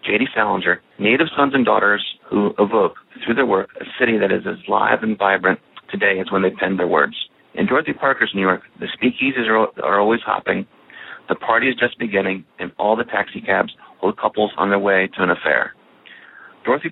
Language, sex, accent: English, male, American